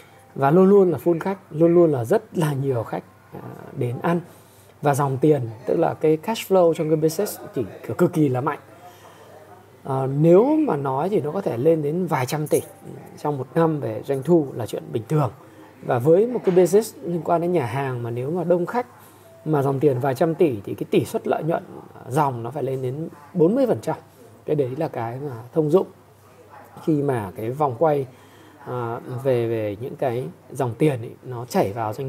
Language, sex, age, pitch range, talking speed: Vietnamese, male, 20-39, 125-170 Hz, 210 wpm